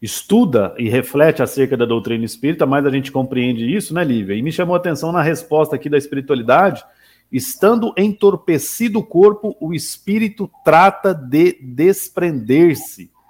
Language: Portuguese